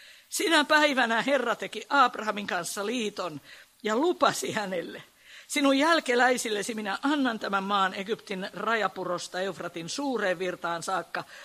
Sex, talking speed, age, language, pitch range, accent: female, 115 wpm, 50-69, Finnish, 180-270 Hz, native